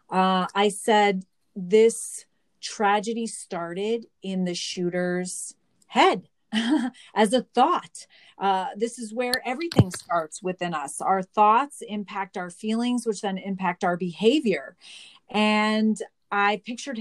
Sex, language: female, English